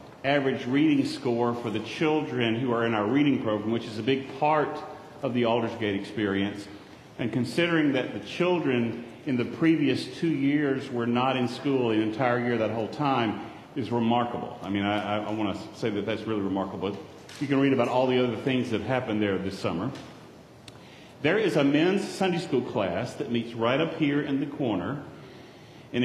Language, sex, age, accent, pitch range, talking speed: English, male, 40-59, American, 115-145 Hz, 195 wpm